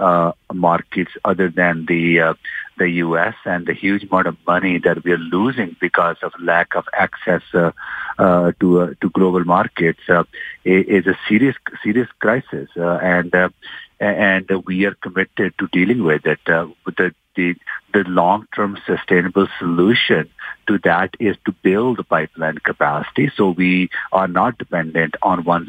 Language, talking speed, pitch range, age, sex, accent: English, 165 wpm, 85-100 Hz, 50-69, male, Indian